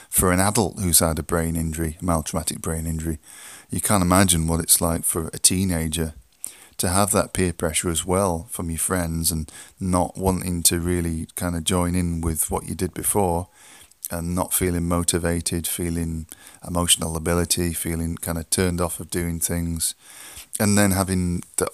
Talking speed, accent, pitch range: 175 wpm, British, 80-90 Hz